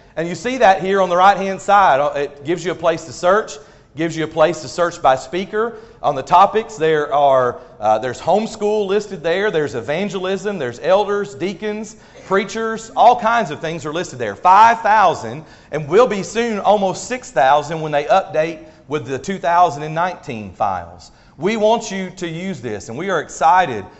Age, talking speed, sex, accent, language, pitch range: 40-59, 180 wpm, male, American, English, 150-200 Hz